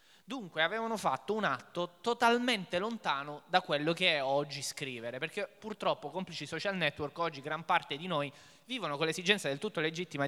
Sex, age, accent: male, 20-39, native